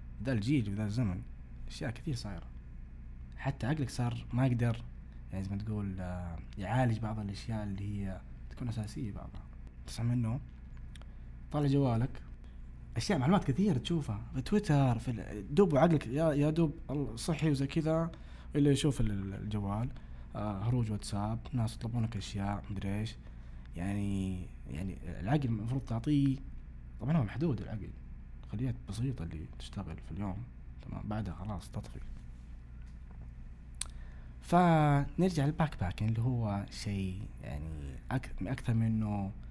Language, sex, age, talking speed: Arabic, male, 20-39, 125 wpm